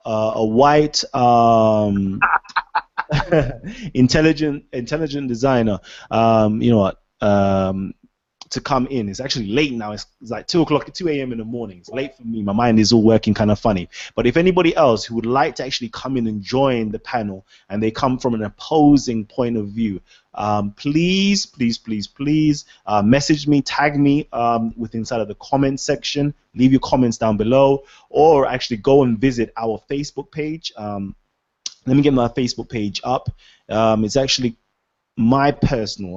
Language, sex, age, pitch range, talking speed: English, male, 20-39, 105-135 Hz, 180 wpm